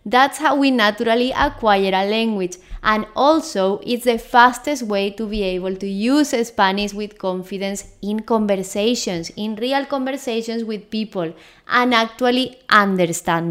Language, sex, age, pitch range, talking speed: English, female, 20-39, 195-245 Hz, 140 wpm